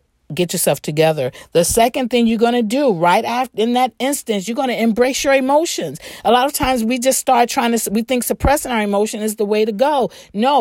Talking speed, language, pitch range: 230 wpm, English, 200-255 Hz